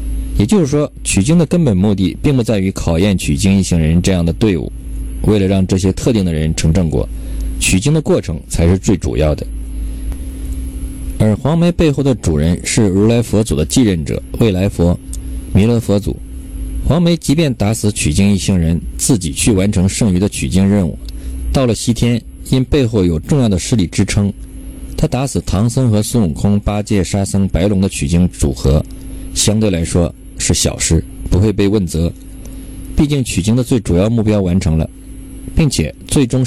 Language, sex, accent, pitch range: Chinese, male, native, 85-115 Hz